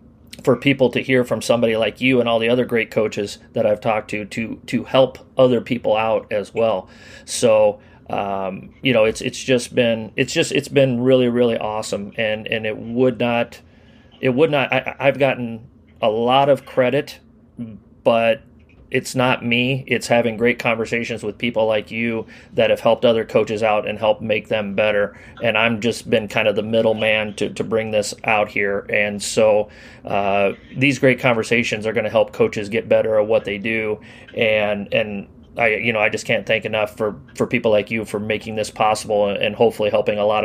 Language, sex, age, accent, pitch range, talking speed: English, male, 30-49, American, 105-125 Hz, 200 wpm